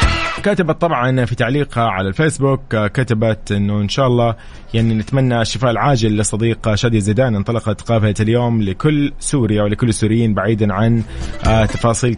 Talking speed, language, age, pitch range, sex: 140 wpm, English, 20-39, 105-120 Hz, male